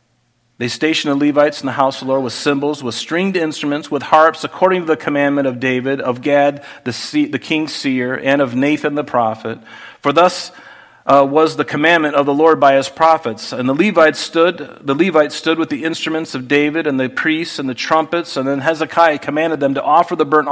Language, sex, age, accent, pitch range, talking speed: English, male, 40-59, American, 135-165 Hz, 210 wpm